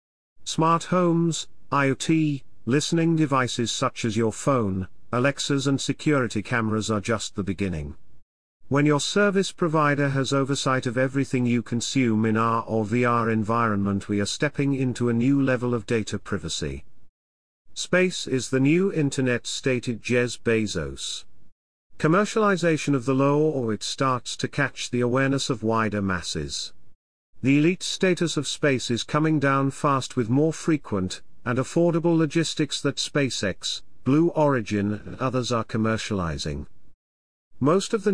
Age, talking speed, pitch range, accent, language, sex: 40-59, 140 wpm, 110-145 Hz, British, English, male